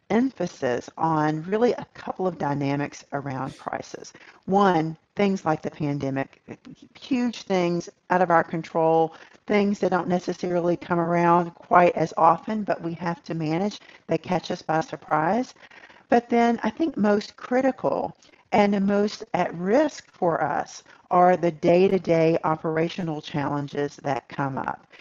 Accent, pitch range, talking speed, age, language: American, 155-185 Hz, 145 wpm, 50-69, English